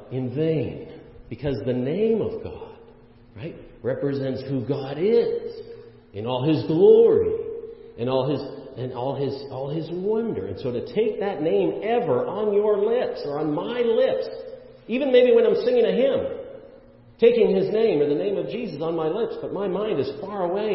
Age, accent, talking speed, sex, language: 50-69, American, 180 wpm, male, English